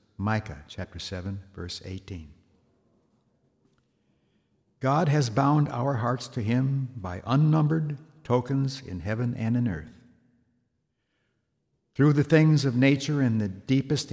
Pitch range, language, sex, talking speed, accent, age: 100-130 Hz, English, male, 120 wpm, American, 60-79